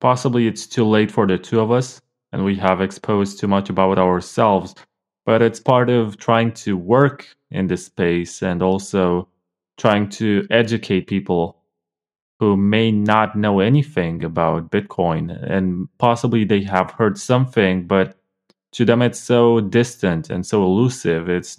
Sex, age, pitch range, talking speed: male, 20-39, 95-120 Hz, 155 wpm